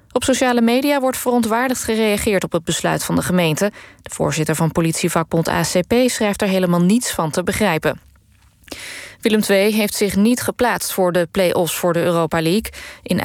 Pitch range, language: 180-230 Hz, Dutch